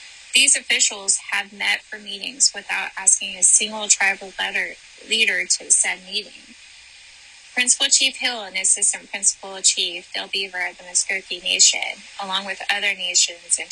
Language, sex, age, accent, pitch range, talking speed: English, female, 10-29, American, 185-215 Hz, 150 wpm